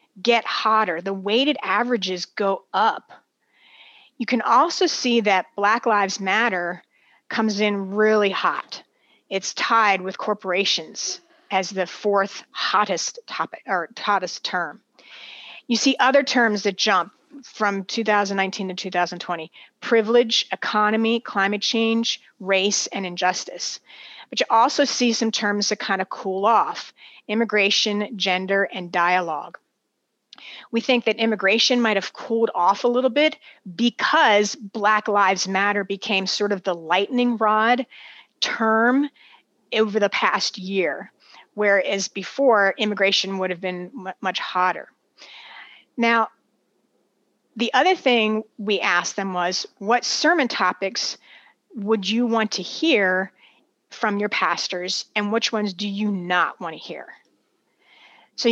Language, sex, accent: English, female, American